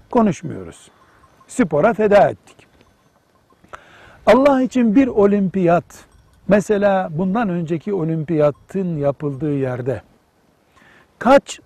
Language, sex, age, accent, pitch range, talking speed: Turkish, male, 60-79, native, 135-200 Hz, 75 wpm